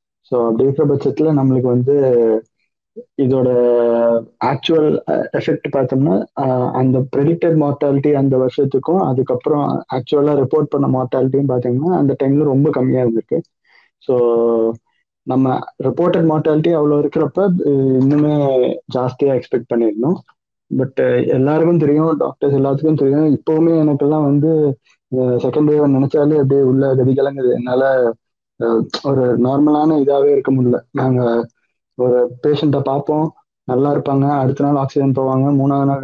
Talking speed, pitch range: 115 wpm, 125-150 Hz